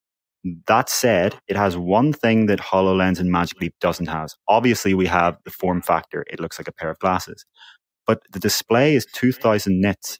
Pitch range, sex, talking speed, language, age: 90-110 Hz, male, 190 wpm, English, 20-39